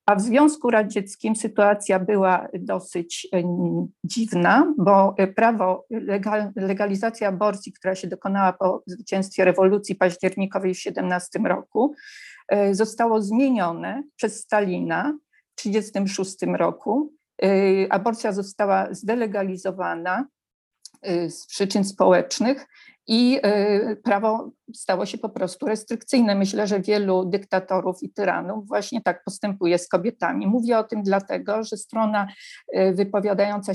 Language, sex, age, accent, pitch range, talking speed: Polish, female, 50-69, native, 185-220 Hz, 105 wpm